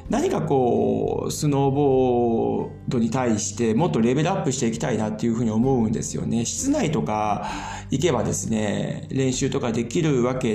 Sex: male